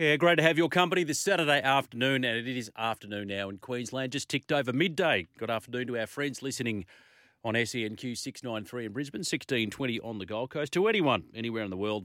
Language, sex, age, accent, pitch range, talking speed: English, male, 40-59, Australian, 105-135 Hz, 210 wpm